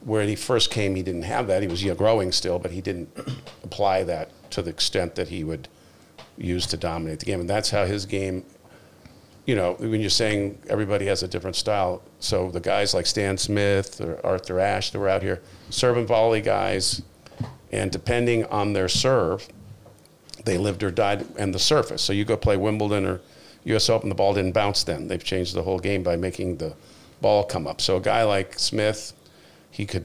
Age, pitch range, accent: 50-69, 95-115 Hz, American